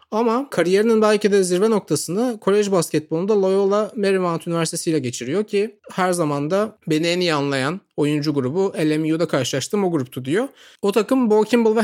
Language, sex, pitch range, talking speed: Turkish, male, 140-185 Hz, 160 wpm